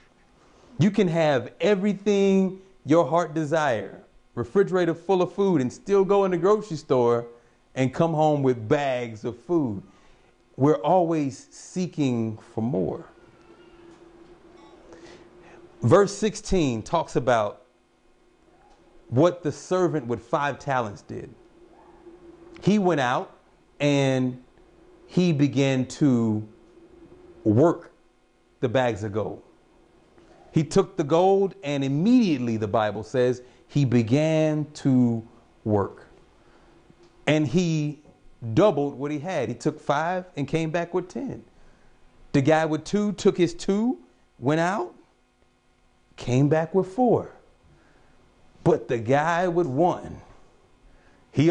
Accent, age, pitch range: American, 40-59, 125-185 Hz